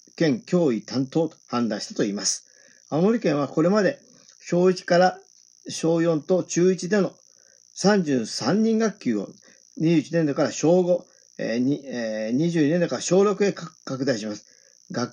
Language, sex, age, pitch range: Japanese, male, 40-59, 125-180 Hz